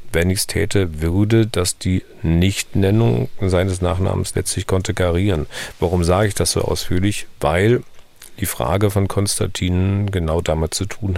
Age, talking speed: 40-59, 145 wpm